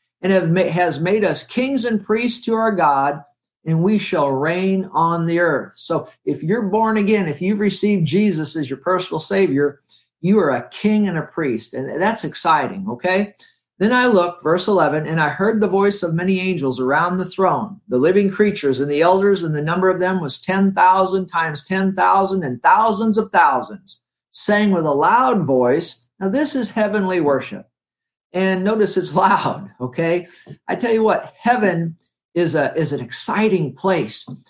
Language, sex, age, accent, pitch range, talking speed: English, male, 50-69, American, 155-205 Hz, 175 wpm